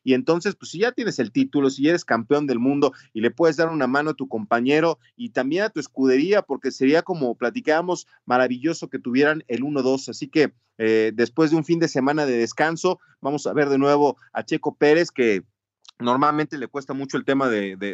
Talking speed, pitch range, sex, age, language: 215 wpm, 120-155 Hz, male, 30-49, Spanish